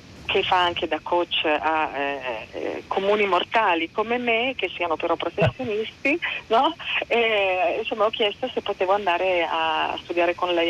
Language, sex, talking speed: Italian, female, 140 wpm